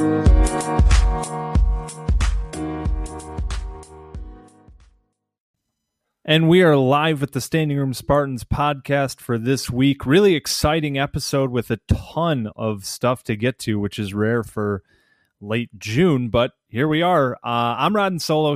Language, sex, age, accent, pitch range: English, male, 30-49, American, 105-140 Hz